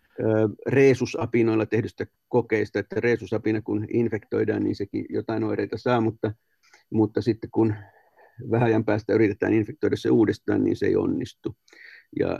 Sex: male